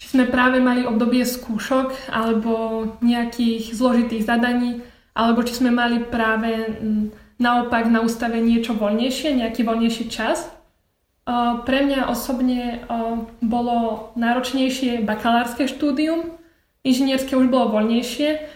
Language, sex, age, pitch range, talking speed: Slovak, female, 20-39, 230-260 Hz, 110 wpm